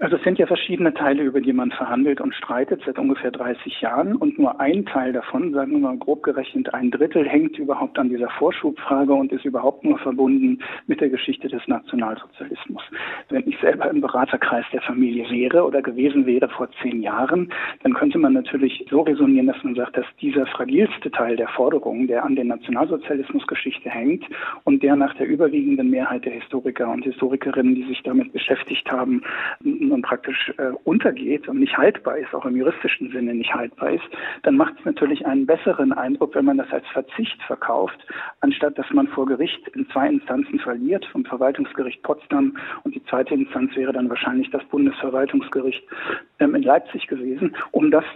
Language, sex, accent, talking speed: German, male, German, 185 wpm